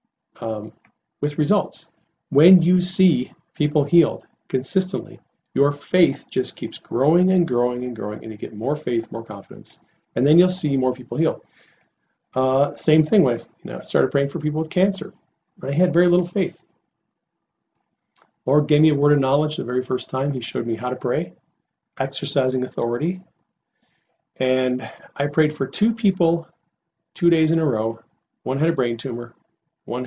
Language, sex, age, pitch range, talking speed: English, male, 40-59, 125-165 Hz, 175 wpm